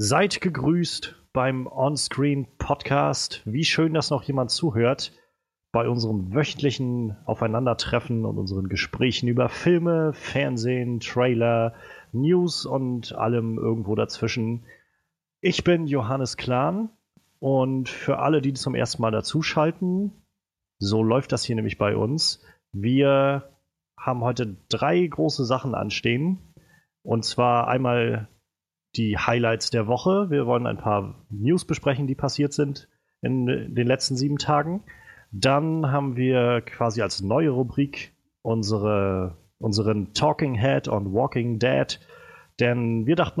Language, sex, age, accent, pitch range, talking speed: German, male, 30-49, German, 115-145 Hz, 125 wpm